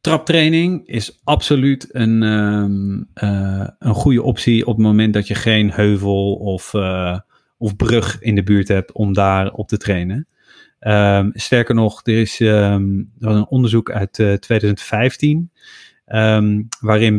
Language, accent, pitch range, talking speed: Dutch, Dutch, 100-115 Hz, 135 wpm